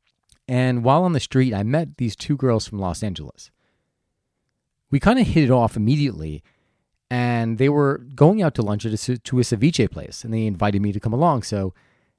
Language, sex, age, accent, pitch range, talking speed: English, male, 30-49, American, 105-145 Hz, 205 wpm